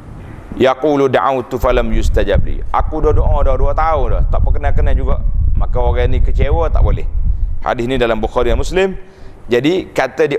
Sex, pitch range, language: male, 90-140 Hz, Malay